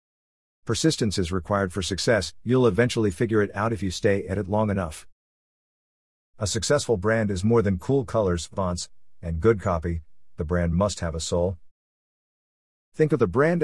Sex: male